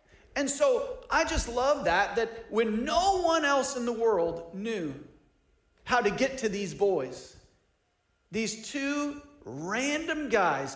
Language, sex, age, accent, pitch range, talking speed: English, male, 40-59, American, 170-235 Hz, 140 wpm